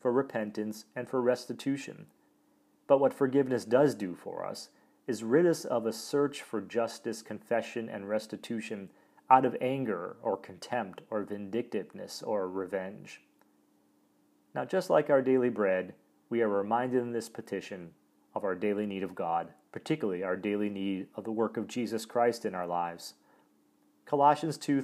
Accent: American